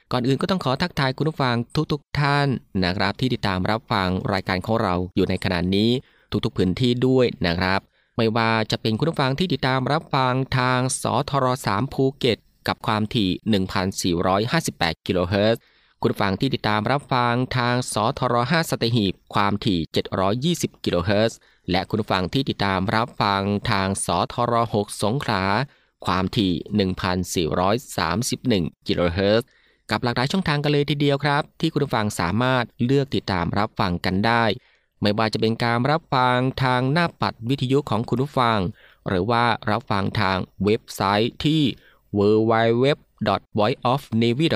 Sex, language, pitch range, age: male, Thai, 100-135 Hz, 20-39